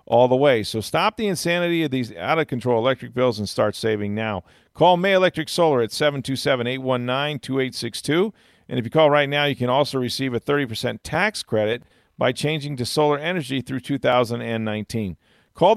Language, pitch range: English, 105-140 Hz